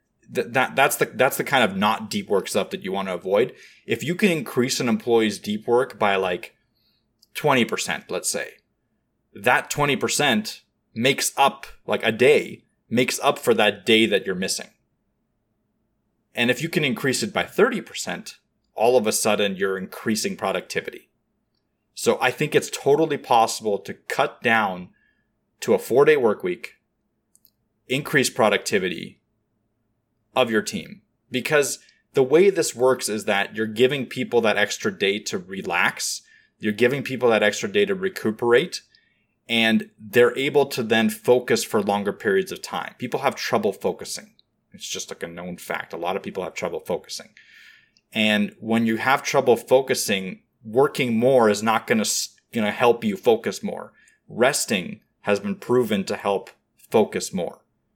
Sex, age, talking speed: male, 30-49, 160 wpm